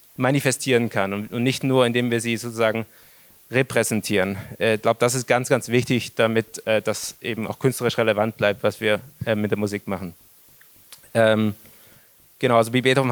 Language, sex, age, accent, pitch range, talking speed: German, male, 20-39, German, 110-125 Hz, 150 wpm